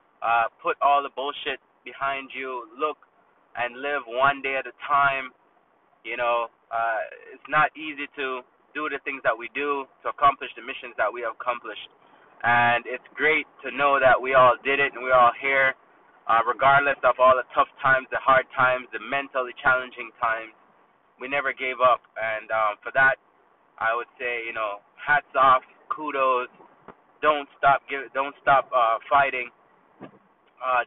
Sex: male